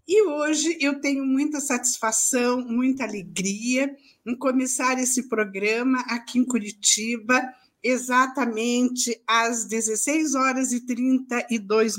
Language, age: Portuguese, 50-69